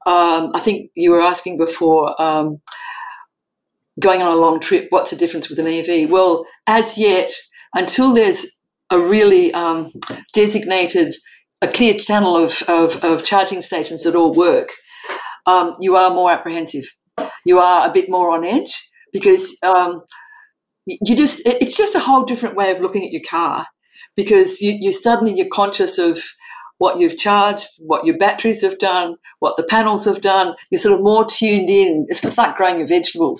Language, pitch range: English, 175-270 Hz